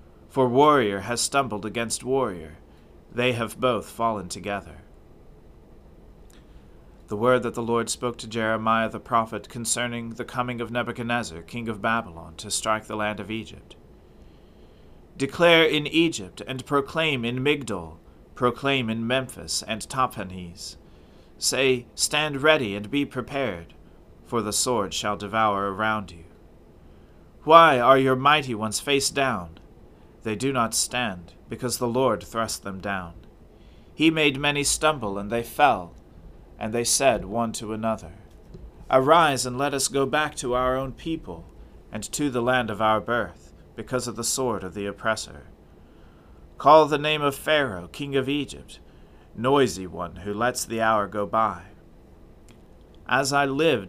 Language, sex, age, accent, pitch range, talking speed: English, male, 40-59, American, 90-130 Hz, 150 wpm